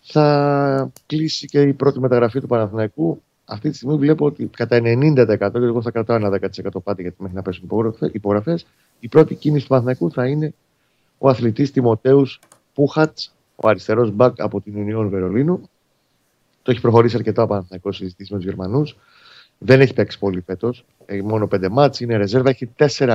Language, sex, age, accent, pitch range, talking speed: Greek, male, 30-49, native, 100-135 Hz, 170 wpm